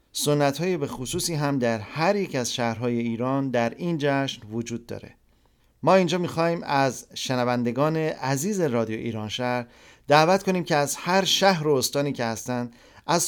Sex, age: male, 40-59